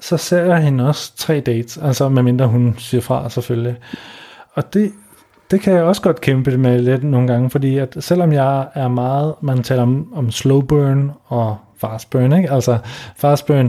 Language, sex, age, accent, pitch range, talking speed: Danish, male, 30-49, native, 120-145 Hz, 190 wpm